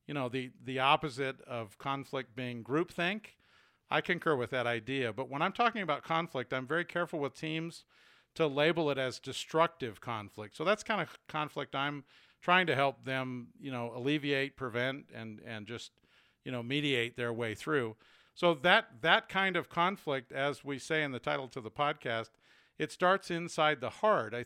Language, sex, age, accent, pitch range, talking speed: English, male, 50-69, American, 125-160 Hz, 185 wpm